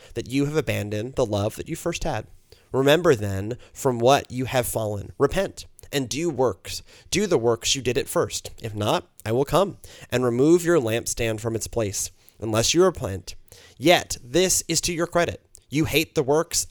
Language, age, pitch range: English, 30-49, 105-150 Hz